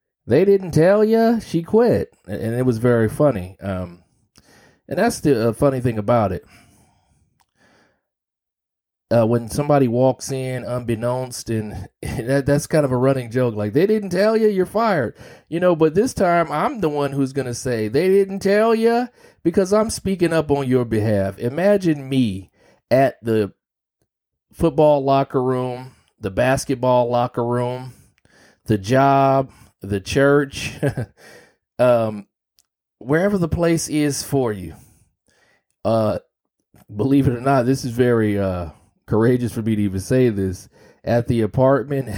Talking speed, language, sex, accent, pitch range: 150 wpm, English, male, American, 115-150 Hz